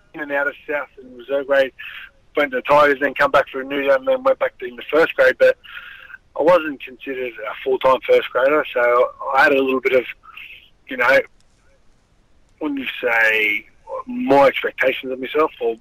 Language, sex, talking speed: English, male, 195 wpm